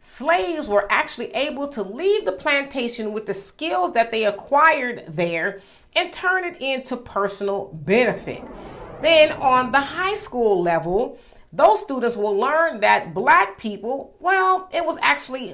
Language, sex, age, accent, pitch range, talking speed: English, female, 40-59, American, 200-300 Hz, 145 wpm